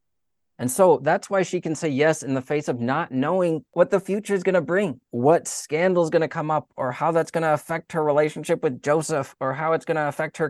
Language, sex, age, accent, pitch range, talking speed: English, male, 30-49, American, 125-175 Hz, 255 wpm